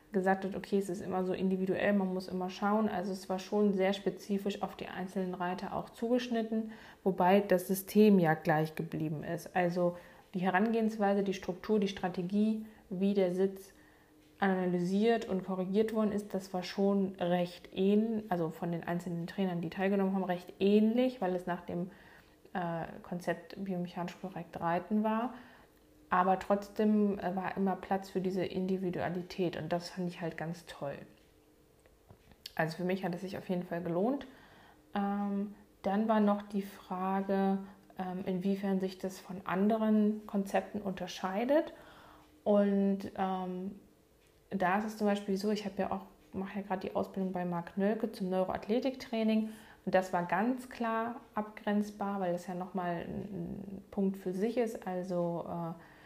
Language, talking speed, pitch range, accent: German, 160 wpm, 180-205 Hz, German